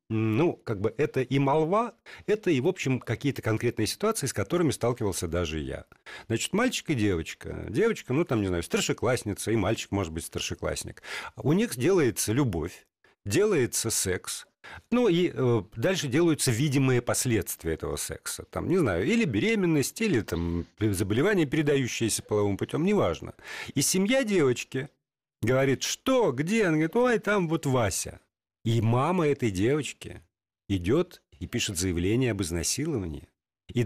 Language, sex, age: Russian, male, 50-69